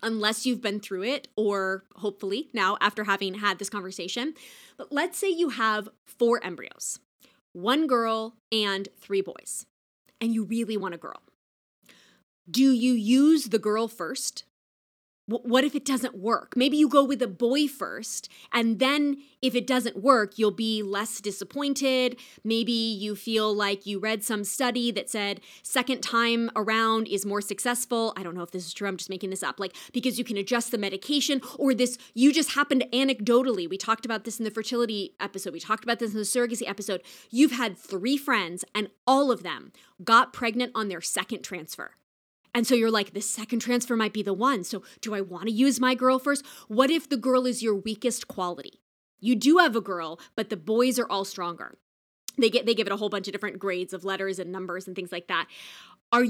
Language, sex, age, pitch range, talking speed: English, female, 20-39, 200-255 Hz, 200 wpm